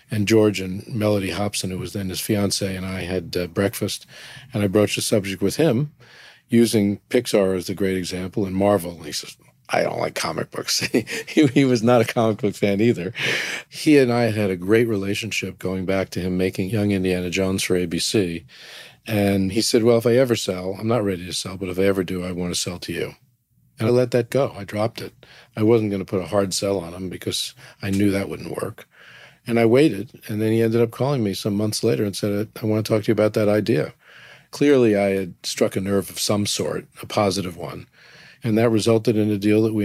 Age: 50-69